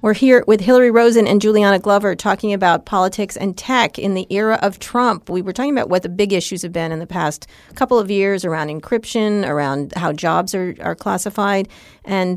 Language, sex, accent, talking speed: English, female, American, 210 wpm